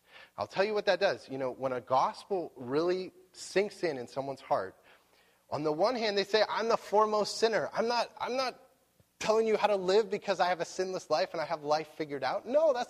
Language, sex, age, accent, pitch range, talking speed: English, male, 20-39, American, 140-215 Hz, 235 wpm